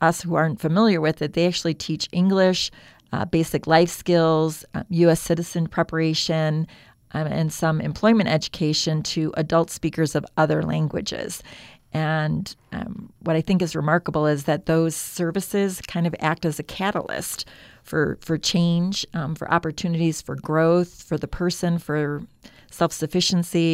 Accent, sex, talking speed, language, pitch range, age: American, female, 150 wpm, English, 155-175 Hz, 40-59